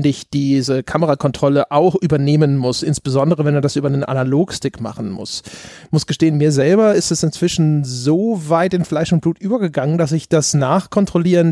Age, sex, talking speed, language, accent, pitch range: 30-49, male, 175 wpm, German, German, 140-175 Hz